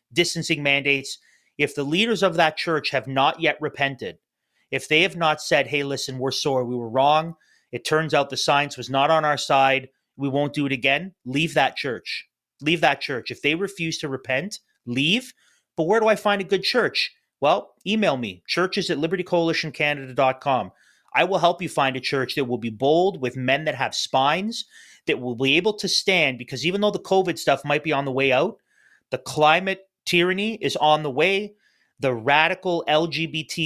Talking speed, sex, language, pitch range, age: 195 wpm, male, English, 135-175 Hz, 30-49